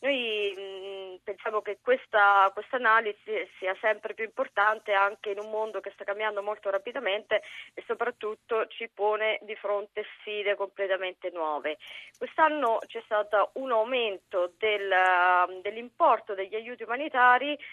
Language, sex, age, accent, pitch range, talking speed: Italian, female, 20-39, native, 200-245 Hz, 130 wpm